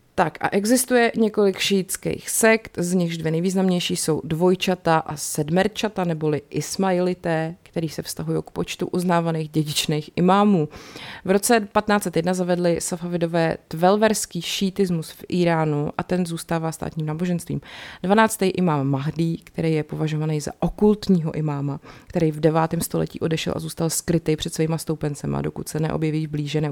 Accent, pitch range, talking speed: native, 150-180 Hz, 140 wpm